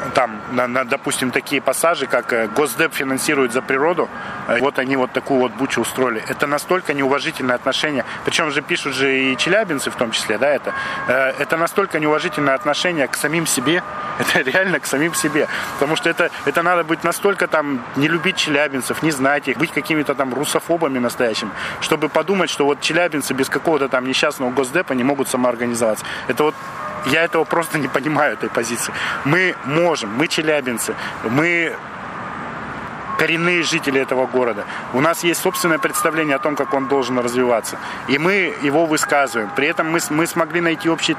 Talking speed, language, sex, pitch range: 170 wpm, Russian, male, 135-165 Hz